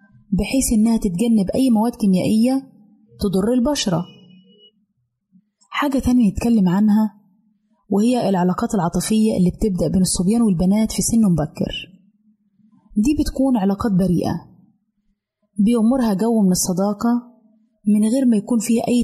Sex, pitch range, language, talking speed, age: female, 190-230 Hz, Arabic, 115 wpm, 20-39